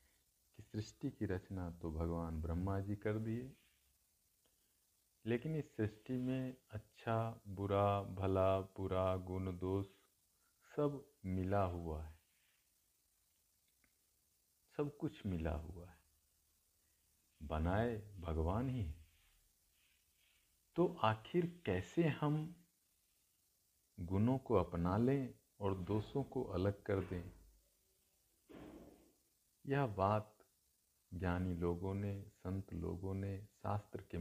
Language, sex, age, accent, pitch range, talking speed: Hindi, male, 50-69, native, 90-110 Hz, 95 wpm